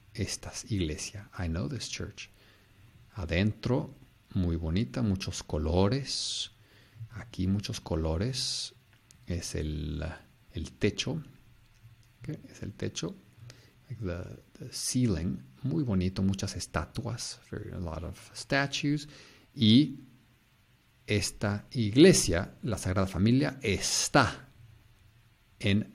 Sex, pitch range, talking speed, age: male, 95-125 Hz, 90 wpm, 50-69